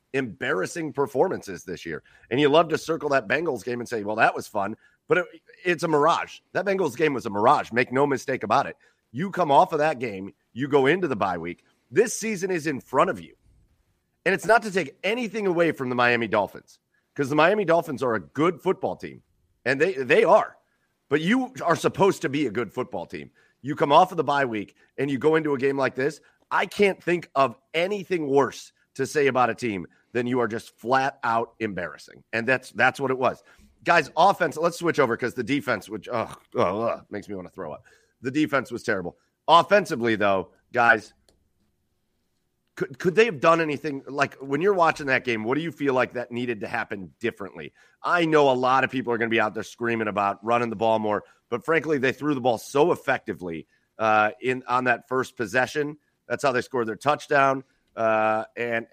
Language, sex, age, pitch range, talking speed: English, male, 40-59, 120-160 Hz, 215 wpm